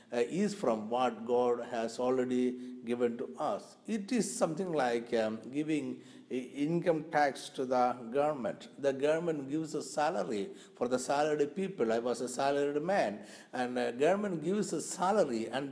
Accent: native